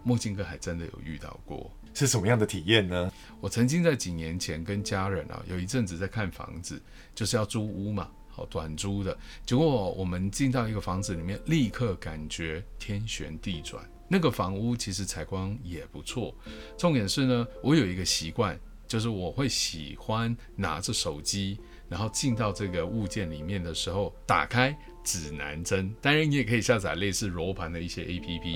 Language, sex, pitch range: English, male, 85-115 Hz